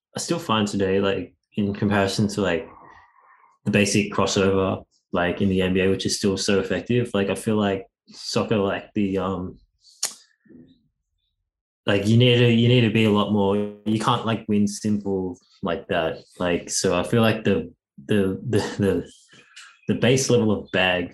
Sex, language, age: male, English, 20-39